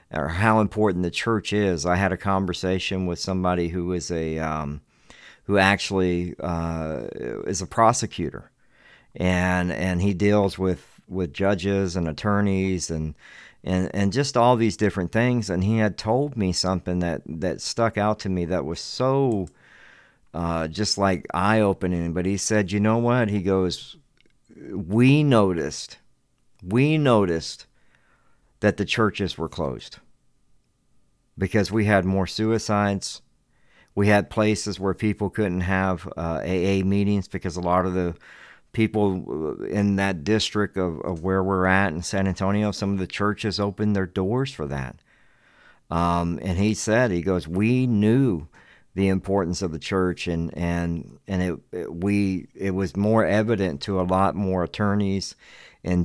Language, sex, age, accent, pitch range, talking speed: English, male, 50-69, American, 90-105 Hz, 155 wpm